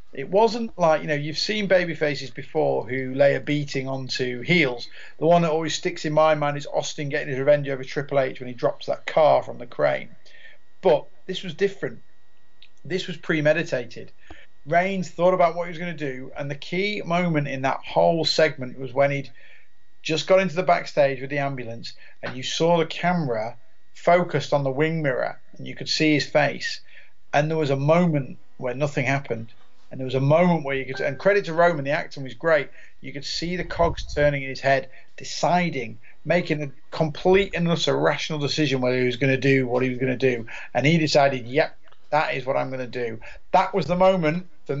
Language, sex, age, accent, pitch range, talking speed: English, male, 40-59, British, 135-170 Hz, 215 wpm